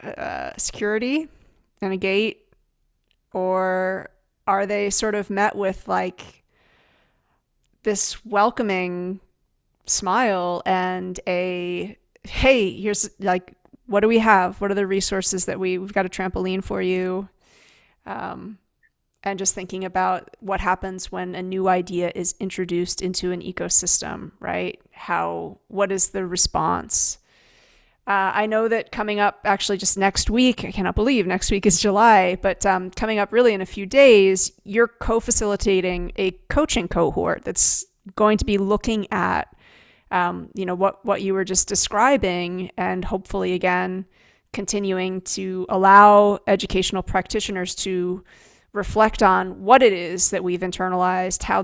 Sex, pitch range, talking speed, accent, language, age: female, 185-205 Hz, 145 wpm, American, English, 30-49